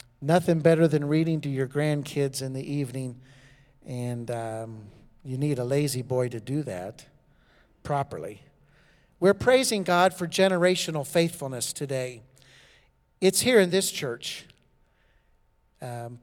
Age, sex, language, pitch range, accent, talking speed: 60-79, male, English, 140-170 Hz, American, 125 wpm